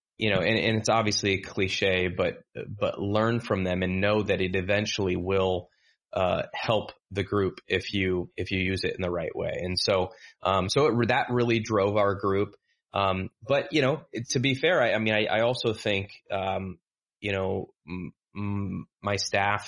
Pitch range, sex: 95-110 Hz, male